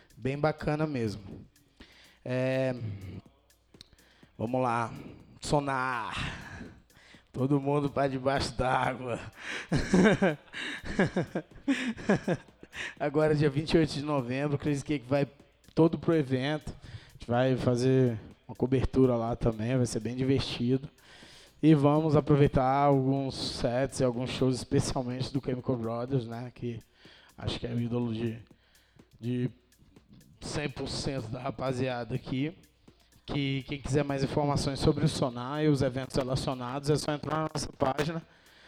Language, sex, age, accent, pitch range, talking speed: English, male, 20-39, Brazilian, 125-150 Hz, 120 wpm